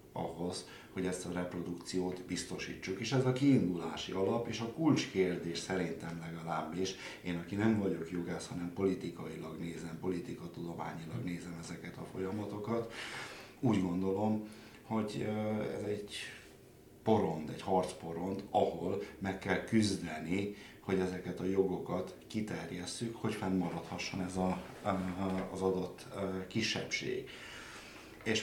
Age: 60-79